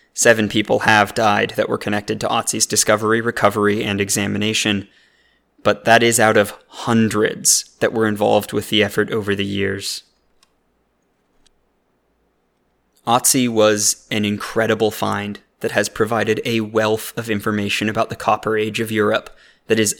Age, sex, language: 20-39, male, English